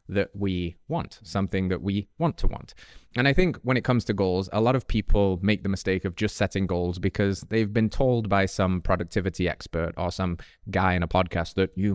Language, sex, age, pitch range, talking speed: English, male, 20-39, 95-115 Hz, 220 wpm